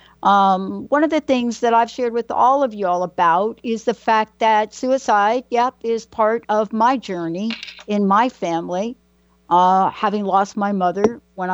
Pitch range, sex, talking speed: 180-235 Hz, female, 175 wpm